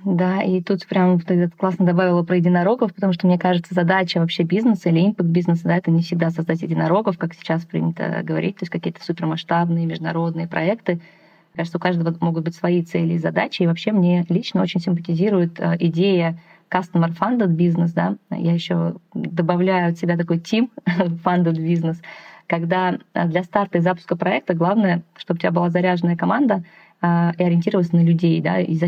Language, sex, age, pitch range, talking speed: Russian, female, 20-39, 165-180 Hz, 170 wpm